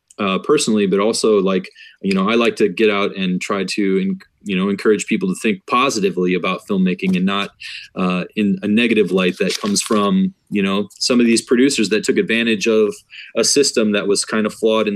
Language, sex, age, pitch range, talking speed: English, male, 30-49, 95-125 Hz, 205 wpm